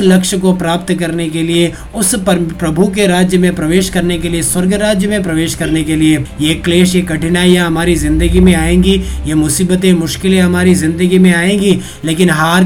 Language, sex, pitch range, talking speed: Hindi, male, 160-185 Hz, 185 wpm